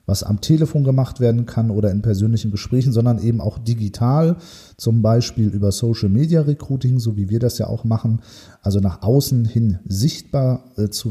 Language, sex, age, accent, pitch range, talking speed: German, male, 40-59, German, 105-130 Hz, 165 wpm